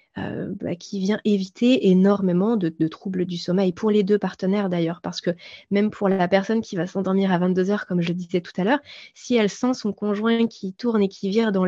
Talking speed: 230 wpm